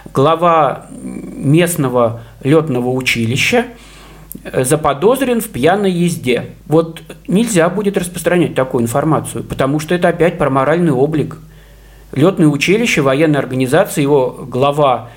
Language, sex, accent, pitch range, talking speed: Russian, male, native, 140-190 Hz, 105 wpm